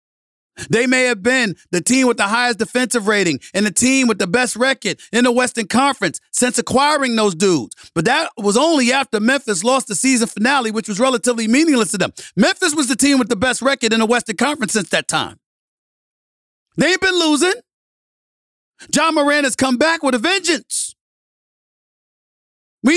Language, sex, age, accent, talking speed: English, male, 40-59, American, 180 wpm